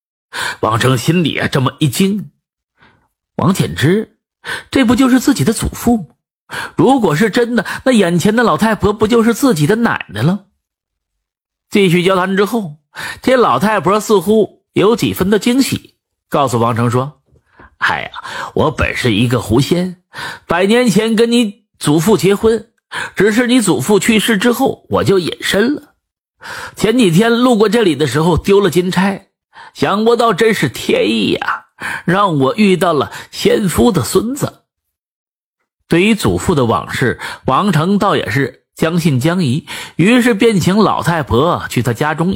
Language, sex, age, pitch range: Chinese, male, 50-69, 165-230 Hz